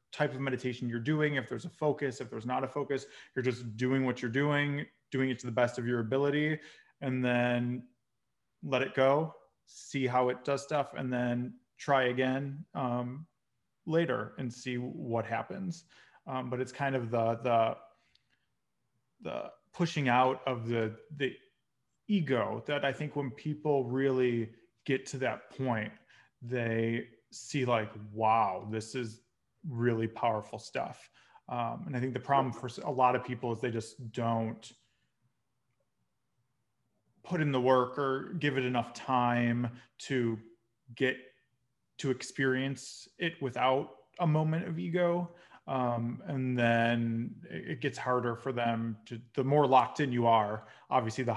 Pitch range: 115-135 Hz